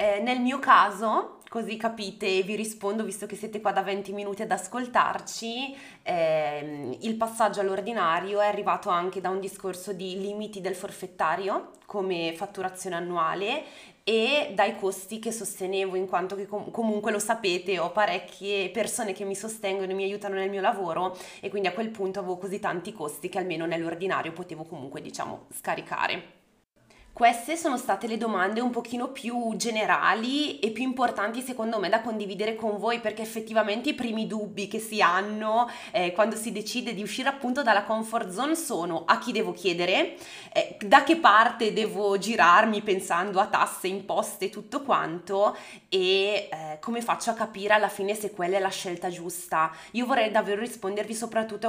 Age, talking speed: 20-39, 170 wpm